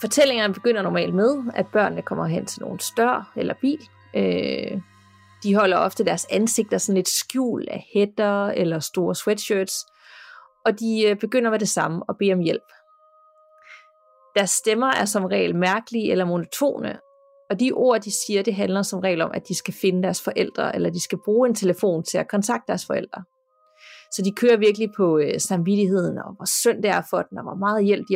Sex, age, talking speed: female, 30-49, 190 wpm